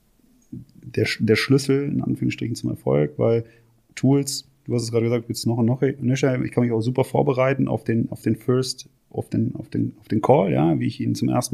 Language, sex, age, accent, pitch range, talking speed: German, male, 30-49, German, 115-130 Hz, 225 wpm